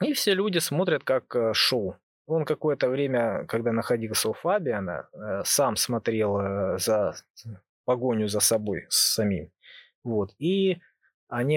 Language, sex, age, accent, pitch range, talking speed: Russian, male, 20-39, native, 110-135 Hz, 120 wpm